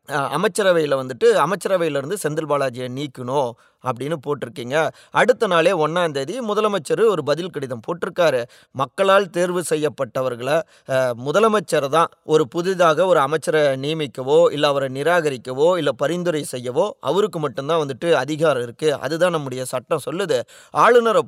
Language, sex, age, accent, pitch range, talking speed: Tamil, male, 20-39, native, 140-175 Hz, 120 wpm